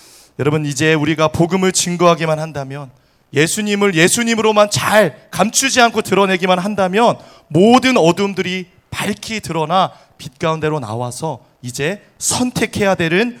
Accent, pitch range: native, 130-190 Hz